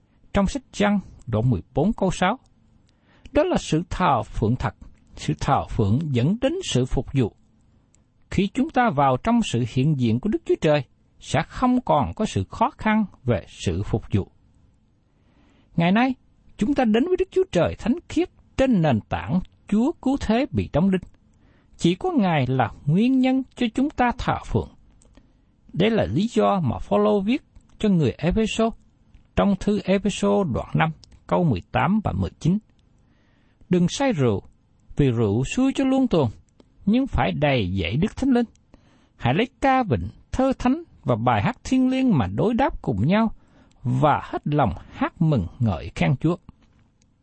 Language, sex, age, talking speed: Vietnamese, male, 60-79, 170 wpm